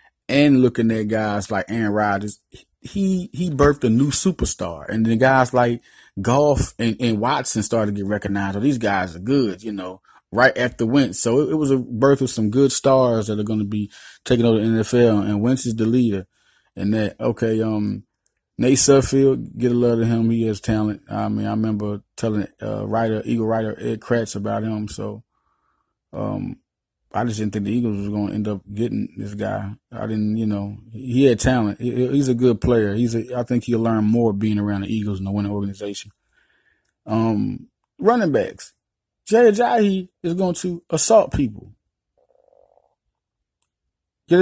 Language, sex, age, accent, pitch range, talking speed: English, male, 30-49, American, 105-130 Hz, 190 wpm